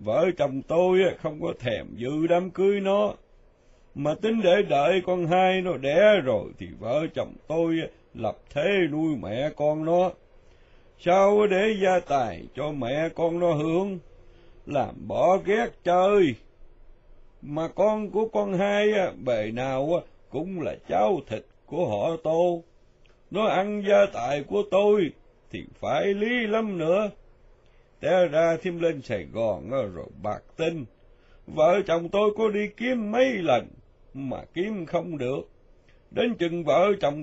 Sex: male